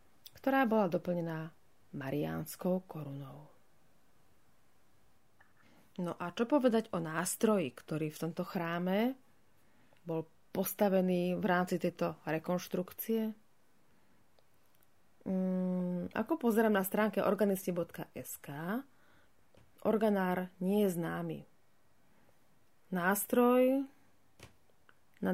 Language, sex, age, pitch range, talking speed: Slovak, female, 30-49, 165-200 Hz, 80 wpm